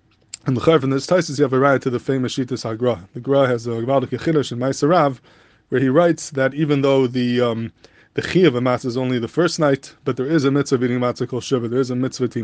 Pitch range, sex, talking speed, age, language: 125-145 Hz, male, 250 wpm, 20-39, English